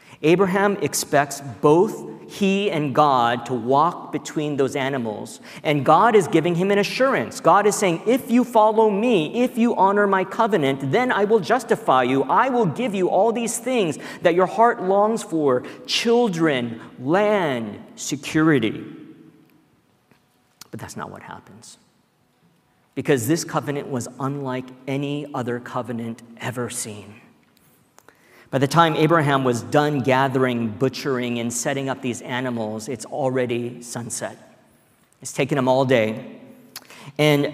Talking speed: 140 wpm